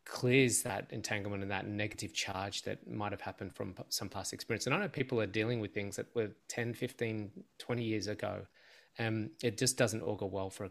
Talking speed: 215 wpm